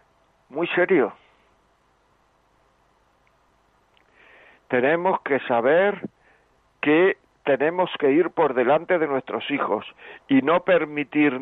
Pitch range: 135-170 Hz